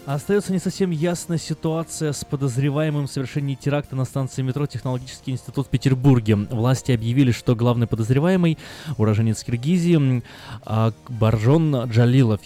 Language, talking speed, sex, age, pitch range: Russian, 125 wpm, male, 20-39, 110-140 Hz